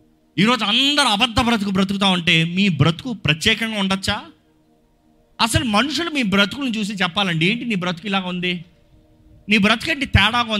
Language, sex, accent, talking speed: Telugu, male, native, 140 wpm